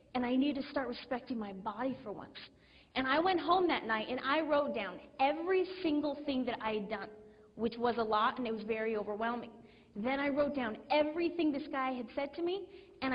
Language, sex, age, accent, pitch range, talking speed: Italian, female, 30-49, American, 230-305 Hz, 220 wpm